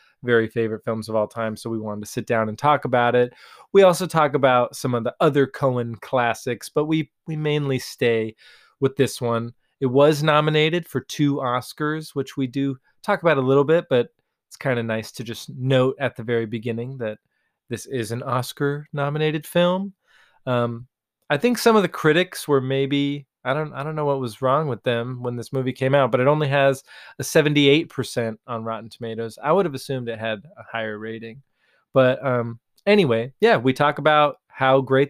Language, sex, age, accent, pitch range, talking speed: English, male, 20-39, American, 120-150 Hz, 205 wpm